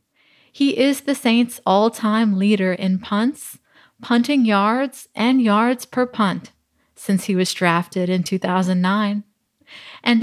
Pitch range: 185-230 Hz